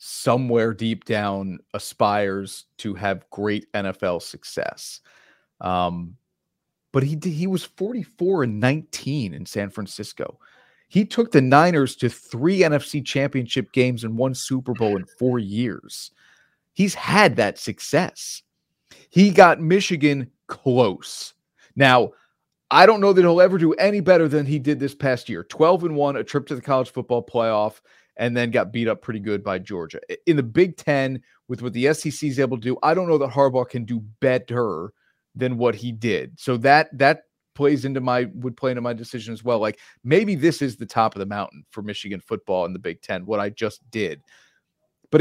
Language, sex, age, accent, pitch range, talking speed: English, male, 30-49, American, 115-155 Hz, 185 wpm